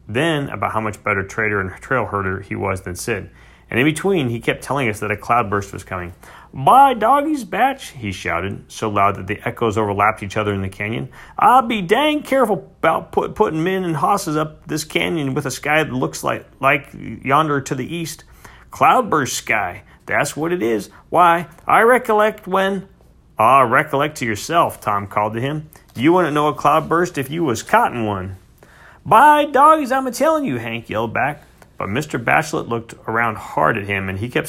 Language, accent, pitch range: English, American, 100-155 Hz